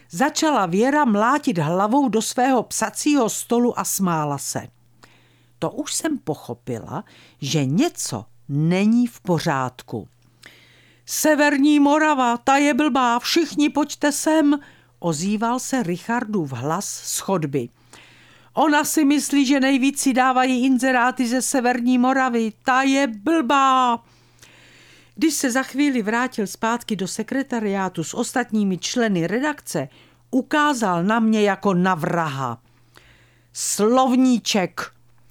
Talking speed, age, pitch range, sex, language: 110 wpm, 50-69, 165-265 Hz, female, Czech